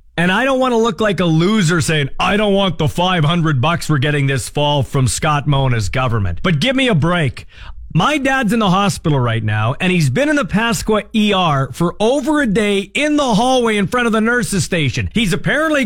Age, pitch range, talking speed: 40-59, 170-250 Hz, 225 wpm